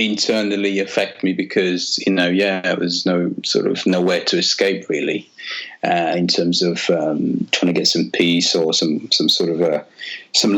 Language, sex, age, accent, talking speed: English, male, 30-49, British, 185 wpm